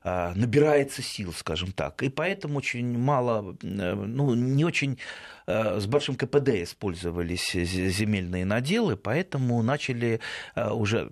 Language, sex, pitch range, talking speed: Russian, male, 95-140 Hz, 110 wpm